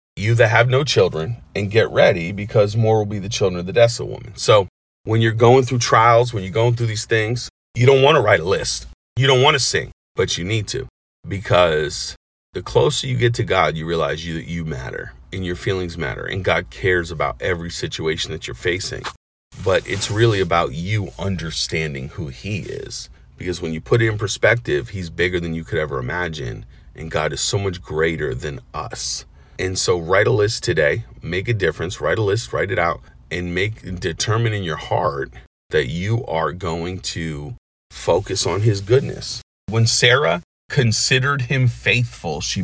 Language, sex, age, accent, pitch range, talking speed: English, male, 40-59, American, 85-120 Hz, 195 wpm